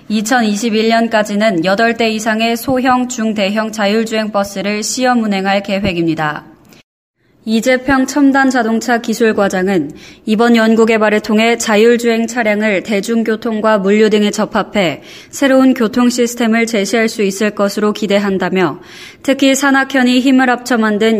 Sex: female